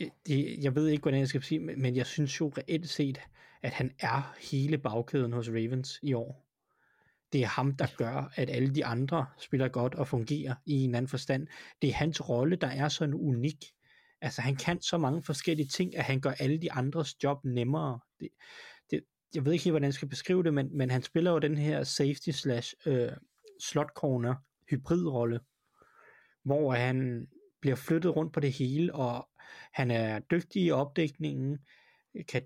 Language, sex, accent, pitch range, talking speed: Danish, male, native, 130-155 Hz, 185 wpm